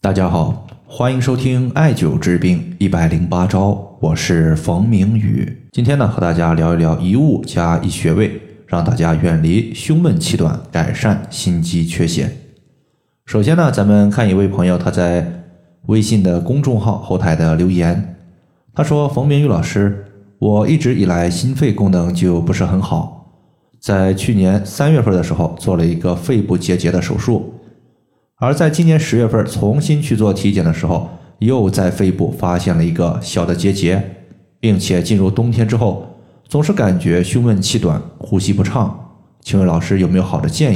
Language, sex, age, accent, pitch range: Chinese, male, 20-39, native, 90-125 Hz